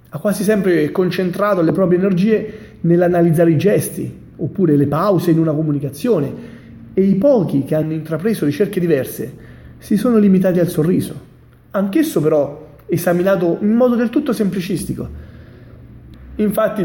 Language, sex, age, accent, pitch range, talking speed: Italian, male, 30-49, native, 145-205 Hz, 130 wpm